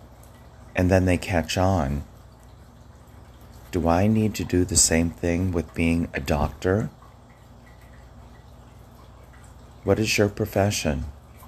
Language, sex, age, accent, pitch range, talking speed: English, male, 40-59, American, 80-110 Hz, 110 wpm